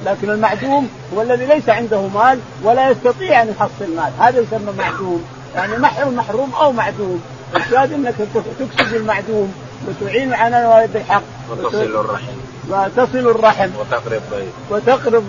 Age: 50-69